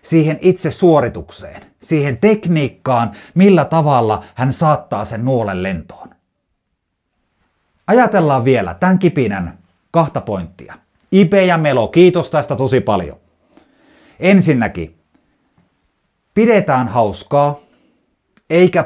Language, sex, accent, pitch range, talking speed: Finnish, male, native, 105-175 Hz, 90 wpm